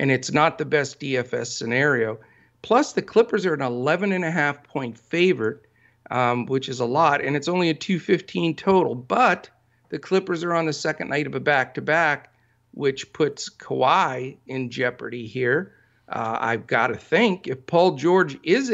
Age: 50-69